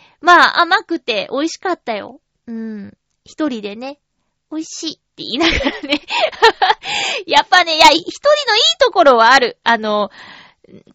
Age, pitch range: 20-39, 225-350 Hz